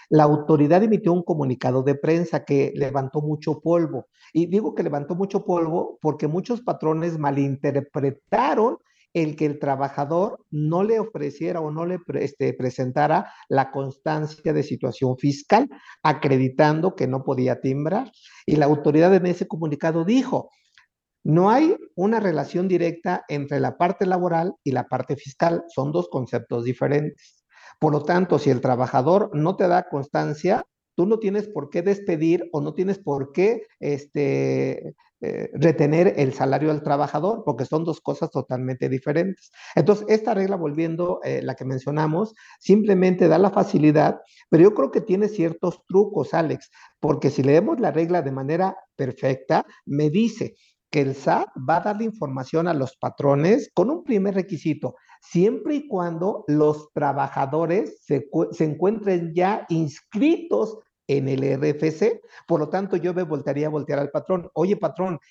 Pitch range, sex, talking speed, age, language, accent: 145-185 Hz, male, 155 wpm, 50-69, Spanish, Mexican